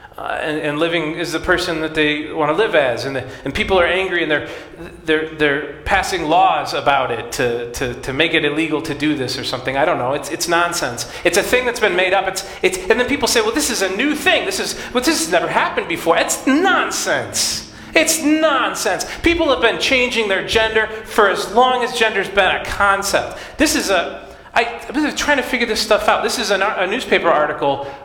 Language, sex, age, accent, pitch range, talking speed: English, male, 30-49, American, 160-235 Hz, 225 wpm